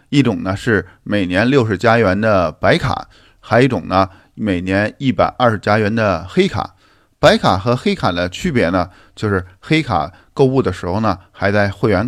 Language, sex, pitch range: Chinese, male, 95-125 Hz